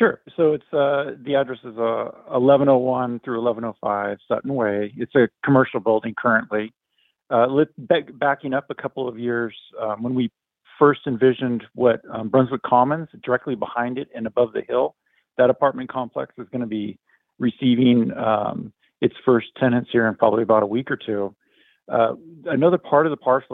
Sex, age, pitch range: male, 50-69, 110-130 Hz